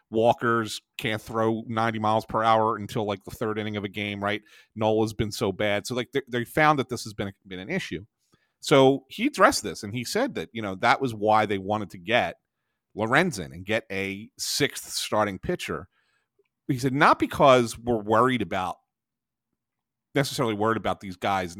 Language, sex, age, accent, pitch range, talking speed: English, male, 40-59, American, 105-125 Hz, 190 wpm